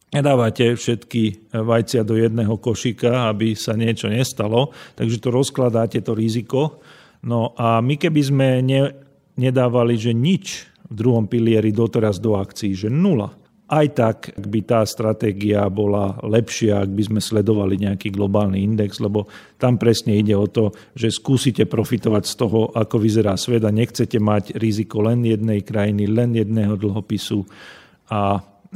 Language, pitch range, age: Slovak, 105-120 Hz, 50-69